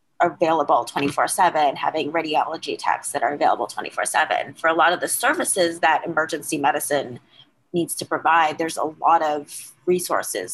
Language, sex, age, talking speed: English, female, 20-39, 150 wpm